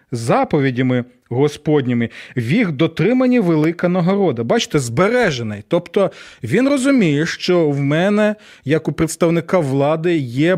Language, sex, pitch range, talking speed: Ukrainian, male, 145-180 Hz, 115 wpm